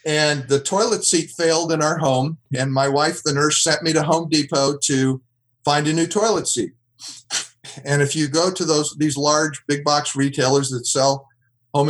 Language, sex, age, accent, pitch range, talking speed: English, male, 50-69, American, 135-175 Hz, 185 wpm